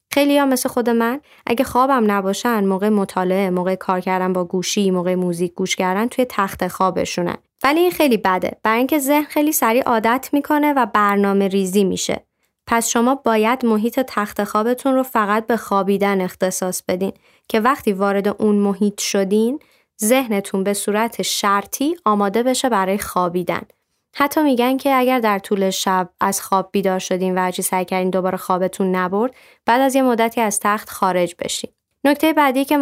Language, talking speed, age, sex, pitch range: Persian, 165 wpm, 20-39, female, 190-235 Hz